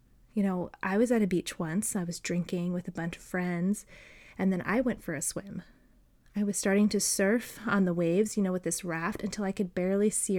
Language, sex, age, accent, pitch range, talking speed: English, female, 20-39, American, 180-215 Hz, 235 wpm